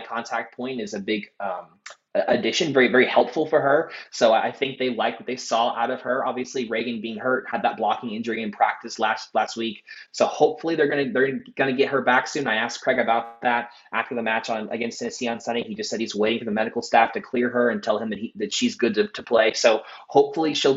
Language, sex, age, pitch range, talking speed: English, male, 20-39, 115-140 Hz, 245 wpm